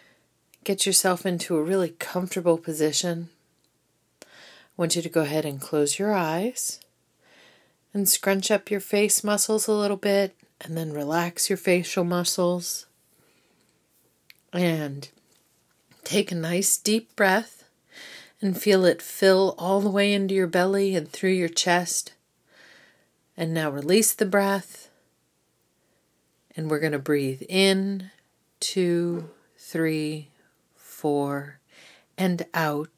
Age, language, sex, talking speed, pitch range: 40-59, English, female, 125 wpm, 155-190 Hz